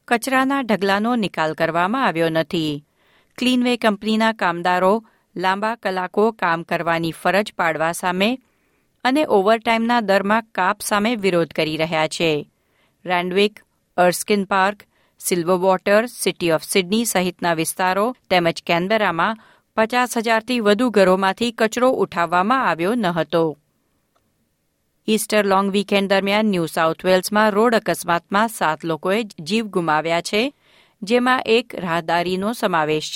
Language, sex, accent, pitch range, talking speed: Gujarati, female, native, 175-225 Hz, 95 wpm